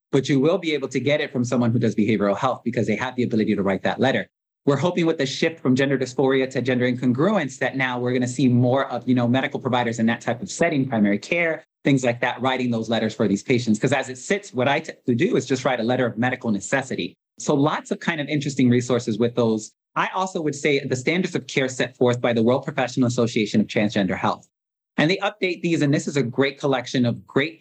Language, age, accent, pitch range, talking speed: English, 30-49, American, 120-145 Hz, 250 wpm